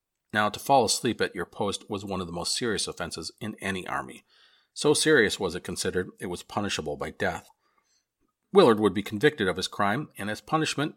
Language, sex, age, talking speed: English, male, 40-59, 200 wpm